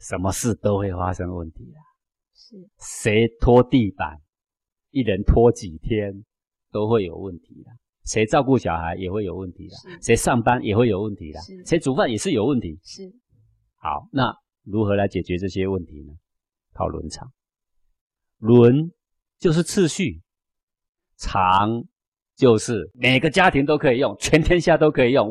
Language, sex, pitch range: Chinese, male, 95-140 Hz